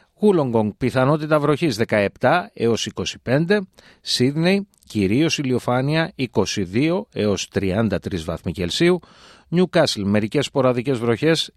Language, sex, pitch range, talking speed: Greek, male, 110-160 Hz, 85 wpm